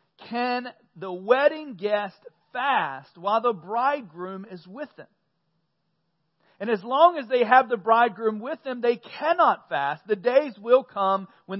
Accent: American